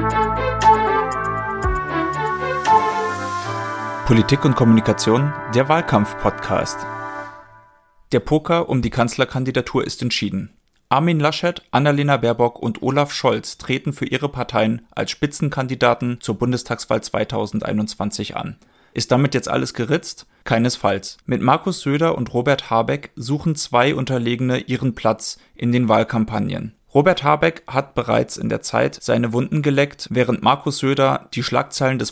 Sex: male